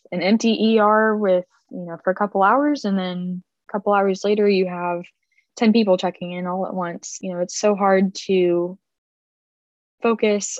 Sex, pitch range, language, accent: female, 180-205 Hz, English, American